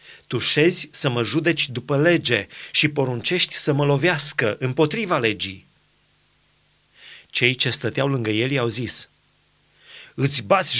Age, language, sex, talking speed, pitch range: 30-49, Romanian, male, 130 wpm, 125-170 Hz